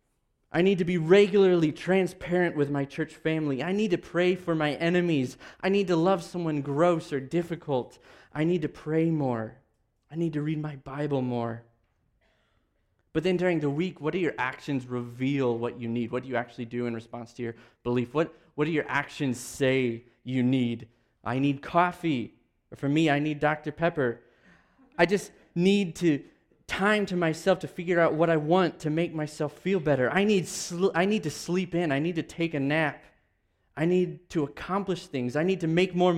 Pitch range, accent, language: 130-175 Hz, American, English